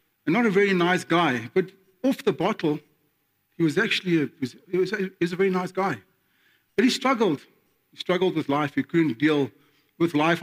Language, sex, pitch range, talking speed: English, male, 120-180 Hz, 205 wpm